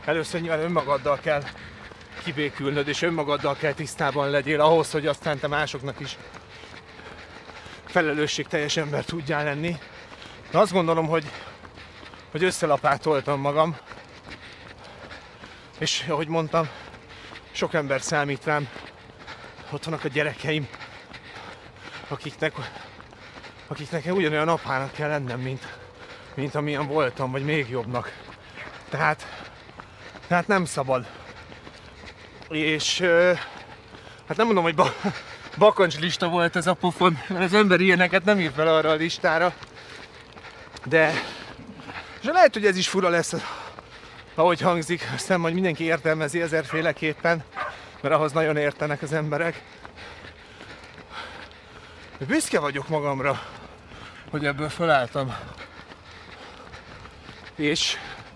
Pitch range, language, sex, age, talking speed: 135-165 Hz, Hungarian, male, 30-49, 110 wpm